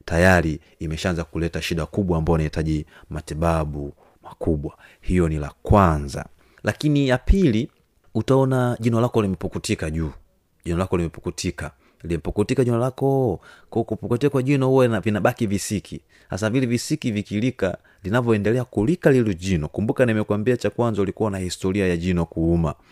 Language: Swahili